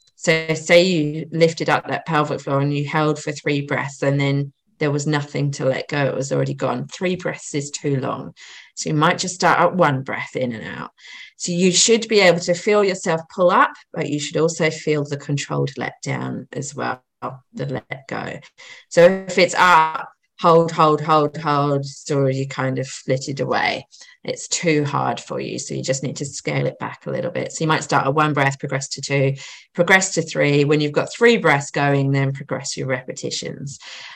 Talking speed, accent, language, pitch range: 210 wpm, British, English, 140-180 Hz